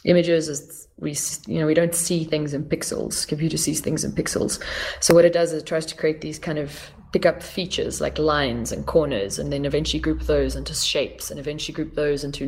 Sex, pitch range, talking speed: female, 140-160 Hz, 210 wpm